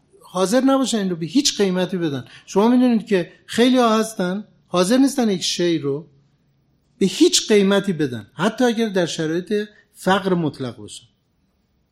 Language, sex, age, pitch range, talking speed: Persian, male, 60-79, 140-205 Hz, 150 wpm